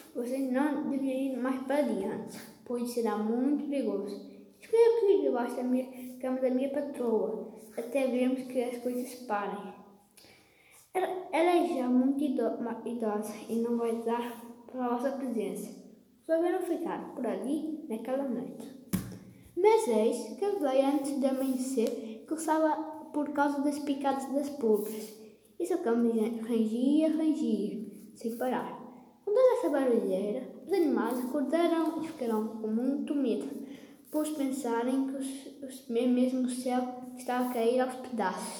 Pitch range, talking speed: 230-285 Hz, 140 wpm